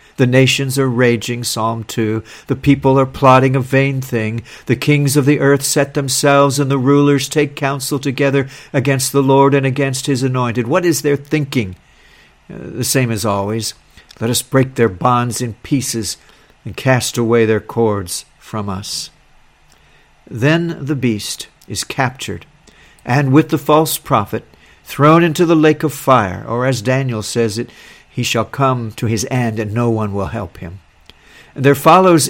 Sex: male